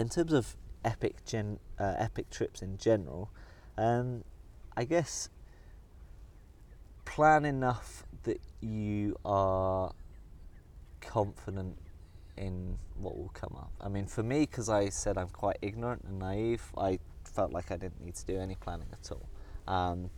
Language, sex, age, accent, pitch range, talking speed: English, male, 20-39, British, 90-105 Hz, 150 wpm